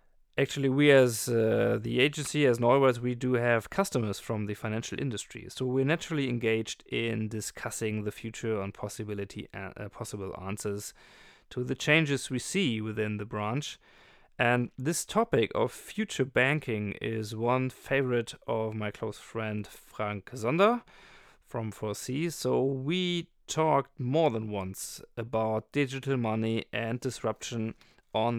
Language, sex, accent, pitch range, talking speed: German, male, German, 110-135 Hz, 140 wpm